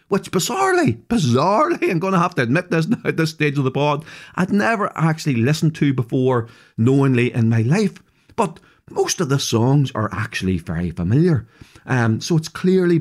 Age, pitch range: 40-59, 130-200 Hz